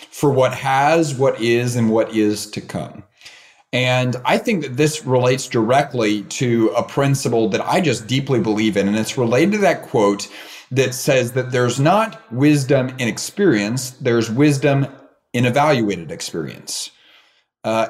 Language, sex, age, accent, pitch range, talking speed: English, male, 30-49, American, 120-160 Hz, 155 wpm